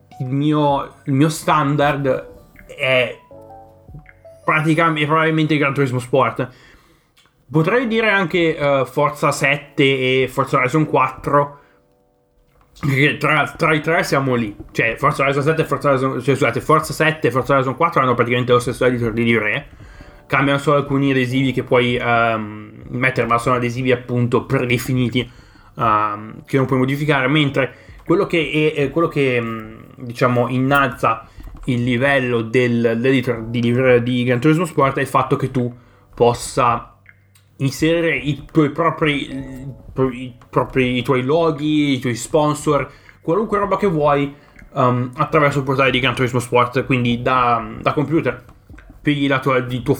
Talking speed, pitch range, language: 145 wpm, 120-145 Hz, Italian